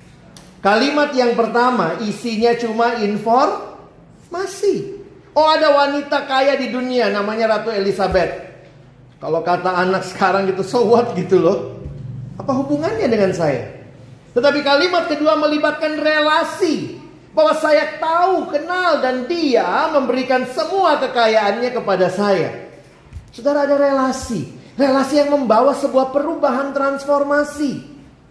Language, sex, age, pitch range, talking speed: Indonesian, male, 40-59, 200-285 Hz, 110 wpm